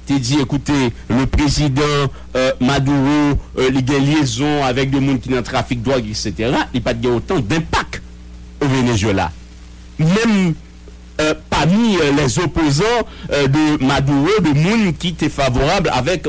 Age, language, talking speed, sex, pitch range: 60-79, English, 170 wpm, male, 115-175 Hz